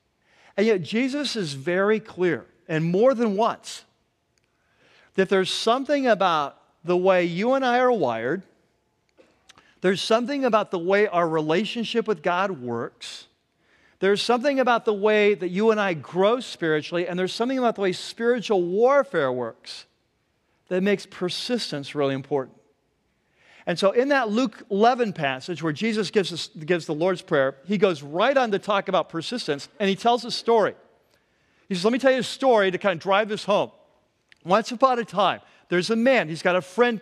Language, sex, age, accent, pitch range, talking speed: English, male, 50-69, American, 175-225 Hz, 175 wpm